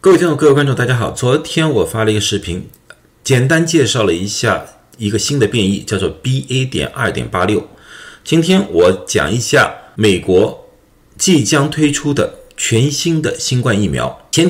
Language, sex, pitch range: Chinese, male, 110-170 Hz